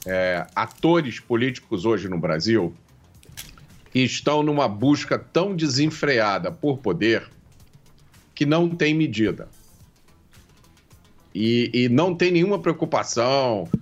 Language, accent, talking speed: English, Brazilian, 100 wpm